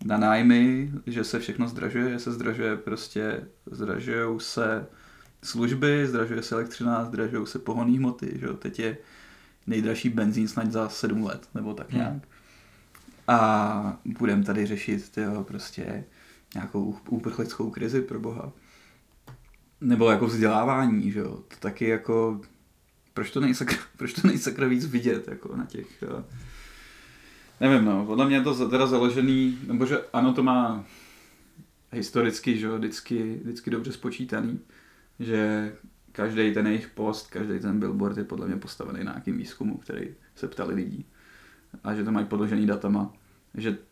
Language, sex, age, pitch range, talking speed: Czech, male, 20-39, 105-120 Hz, 140 wpm